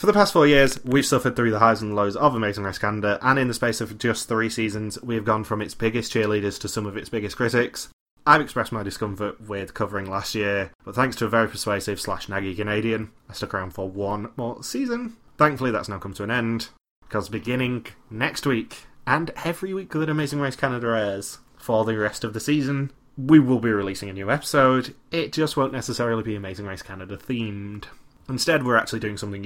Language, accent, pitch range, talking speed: English, British, 105-135 Hz, 215 wpm